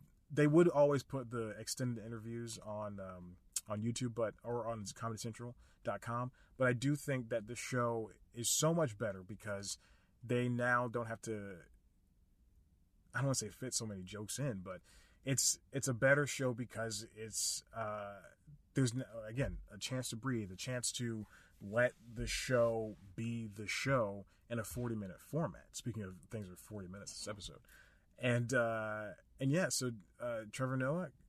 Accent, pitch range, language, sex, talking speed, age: American, 110-140 Hz, English, male, 170 wpm, 30-49